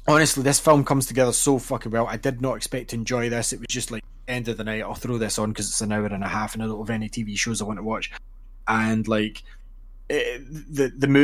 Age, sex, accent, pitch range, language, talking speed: 20-39, male, British, 105-125 Hz, English, 265 wpm